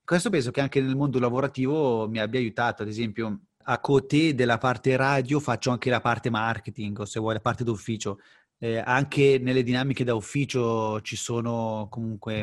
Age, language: 30-49, Italian